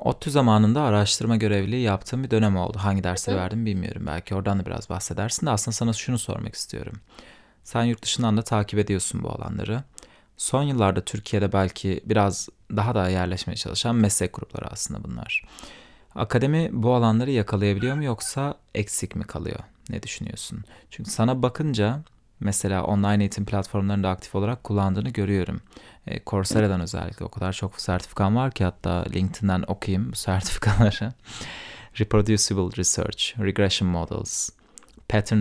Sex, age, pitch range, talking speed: male, 30-49, 95-115 Hz, 145 wpm